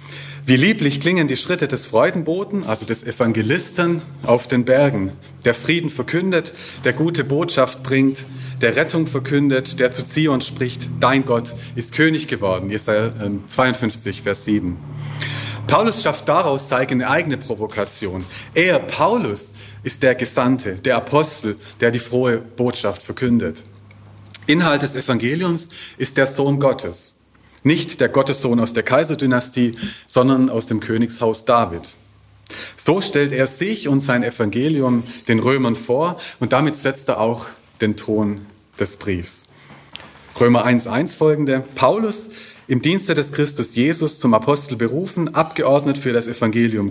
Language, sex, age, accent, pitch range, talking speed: German, male, 40-59, German, 115-145 Hz, 140 wpm